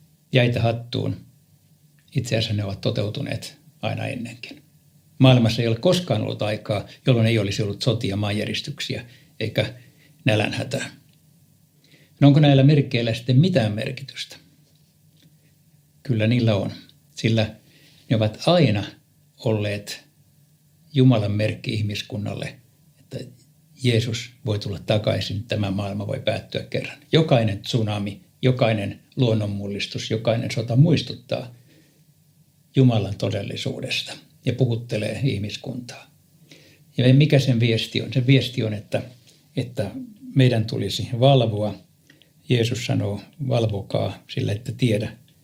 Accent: native